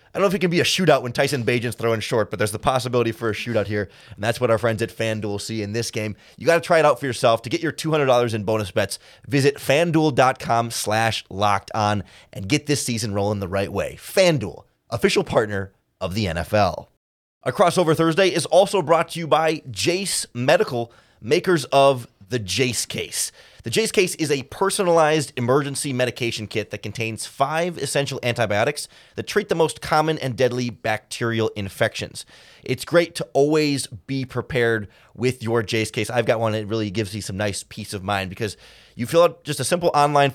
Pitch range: 110-150 Hz